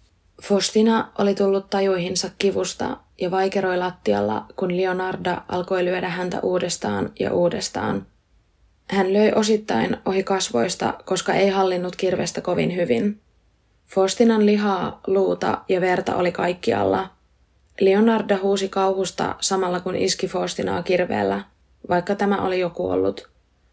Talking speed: 120 wpm